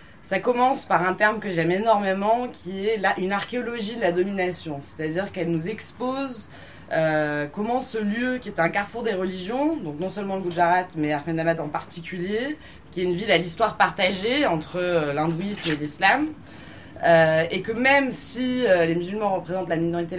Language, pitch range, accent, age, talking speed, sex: French, 165-230 Hz, French, 20-39, 185 wpm, female